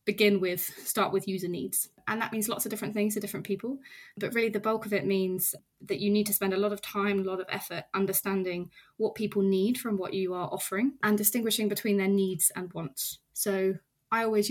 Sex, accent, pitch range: female, British, 190-210 Hz